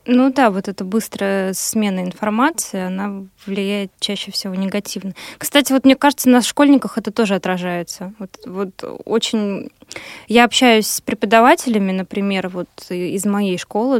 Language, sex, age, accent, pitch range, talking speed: Russian, female, 20-39, native, 190-230 Hz, 140 wpm